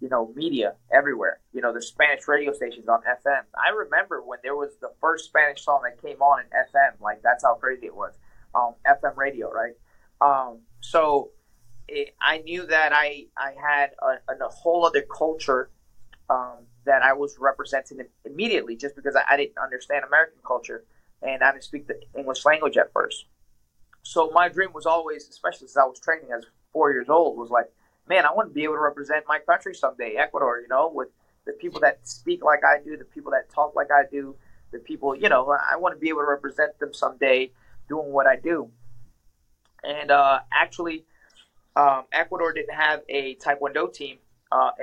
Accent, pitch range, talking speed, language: American, 130-160 Hz, 195 wpm, English